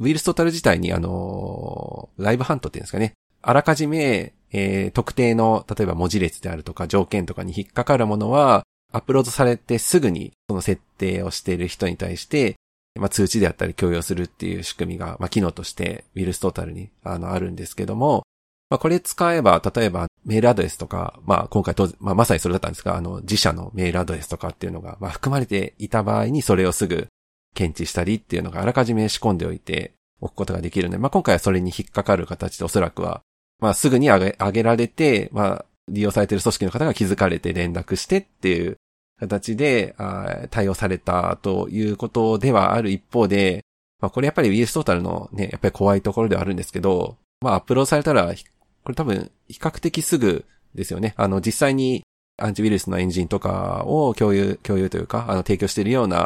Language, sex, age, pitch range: Japanese, male, 40-59, 95-115 Hz